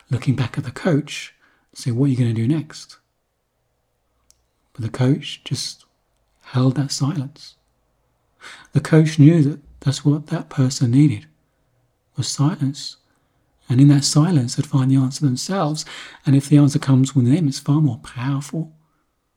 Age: 40-59